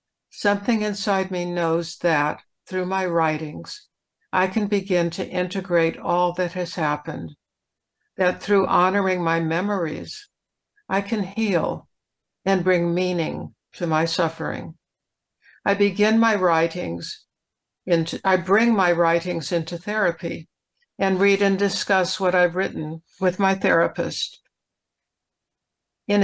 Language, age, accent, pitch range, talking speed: English, 60-79, American, 170-200 Hz, 120 wpm